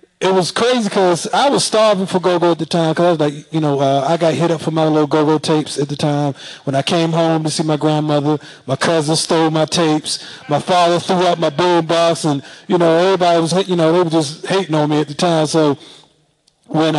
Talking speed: 240 wpm